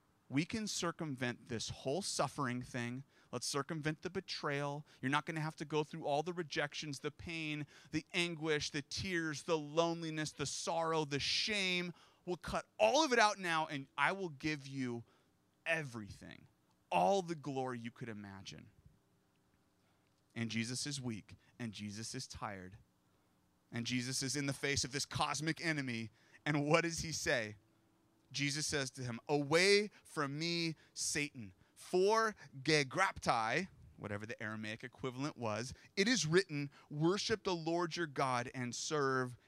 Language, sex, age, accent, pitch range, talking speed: English, male, 30-49, American, 115-155 Hz, 155 wpm